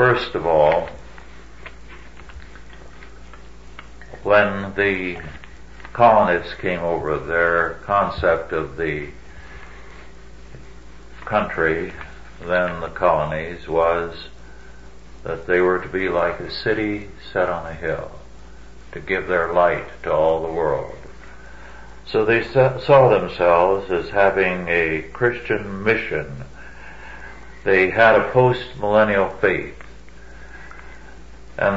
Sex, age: male, 60-79